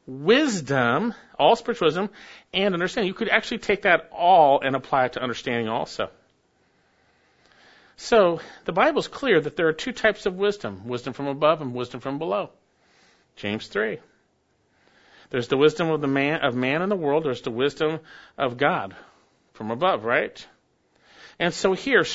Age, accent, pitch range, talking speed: 50-69, American, 115-170 Hz, 165 wpm